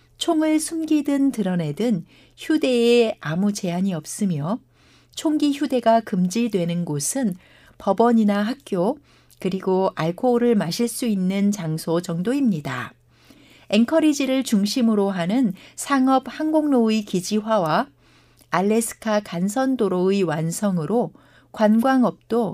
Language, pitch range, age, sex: Korean, 180-245 Hz, 60-79, female